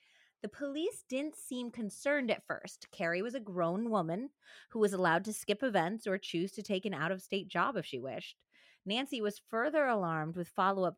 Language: English